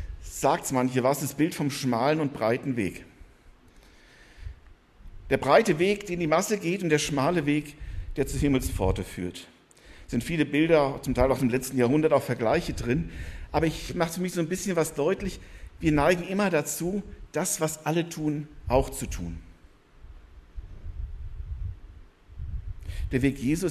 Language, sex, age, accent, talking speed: German, male, 50-69, German, 165 wpm